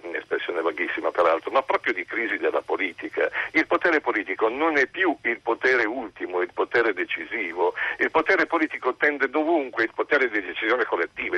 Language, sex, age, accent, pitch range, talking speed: Italian, male, 50-69, native, 335-445 Hz, 165 wpm